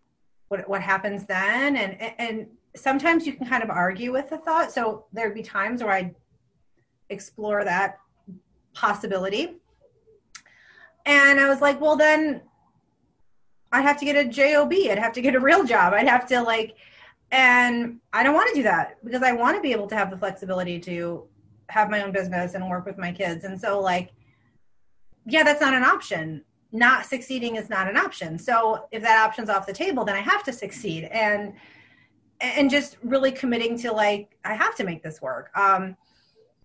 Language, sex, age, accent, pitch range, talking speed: English, female, 30-49, American, 195-275 Hz, 190 wpm